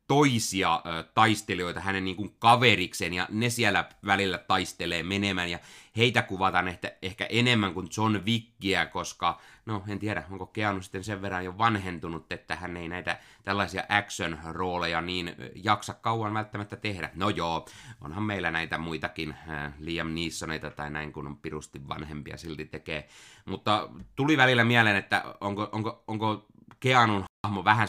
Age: 30-49